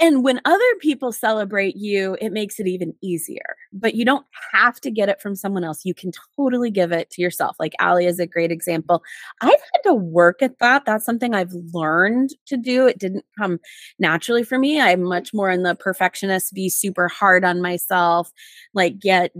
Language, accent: English, American